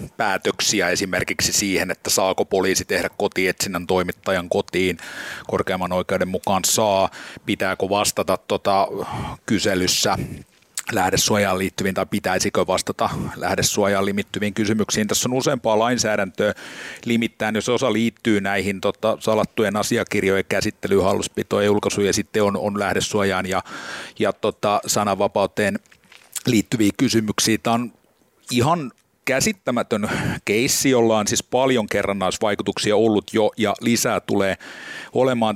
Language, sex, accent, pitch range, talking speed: Finnish, male, native, 100-115 Hz, 115 wpm